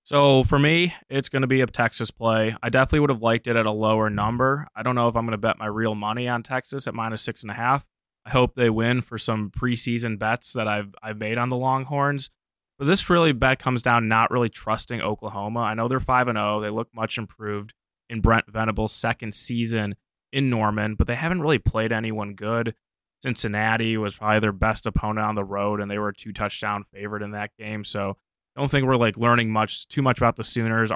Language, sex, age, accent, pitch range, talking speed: English, male, 20-39, American, 105-120 Hz, 230 wpm